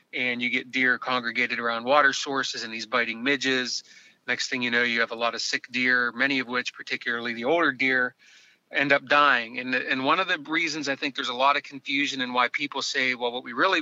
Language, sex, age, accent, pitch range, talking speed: English, male, 30-49, American, 120-150 Hz, 235 wpm